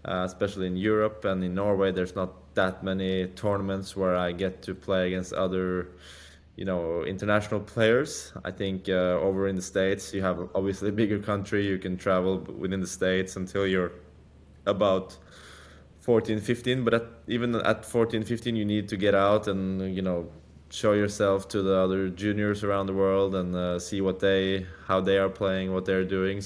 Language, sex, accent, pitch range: English, male, Norwegian, 90-100 Hz